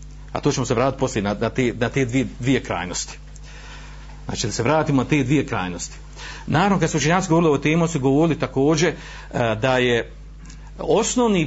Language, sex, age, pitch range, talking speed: Croatian, male, 50-69, 130-165 Hz, 185 wpm